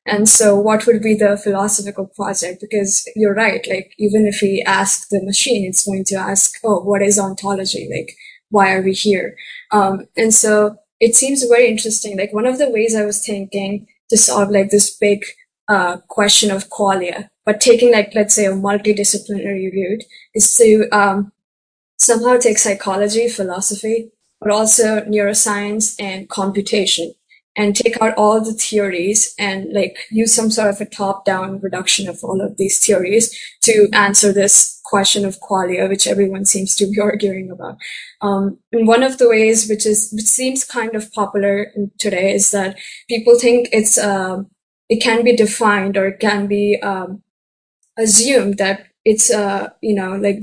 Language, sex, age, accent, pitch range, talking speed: English, female, 20-39, Indian, 195-220 Hz, 175 wpm